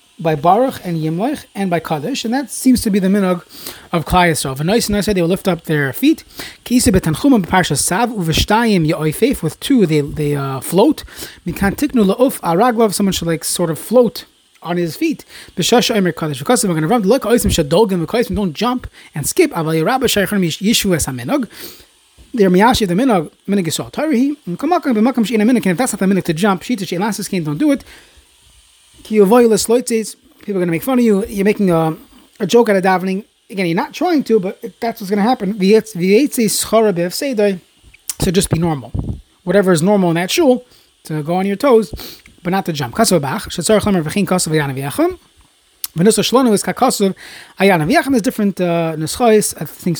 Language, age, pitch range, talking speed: English, 30-49, 170-235 Hz, 150 wpm